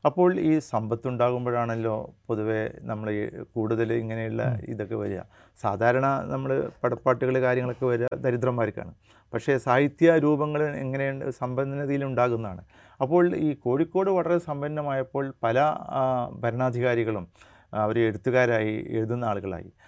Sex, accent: male, native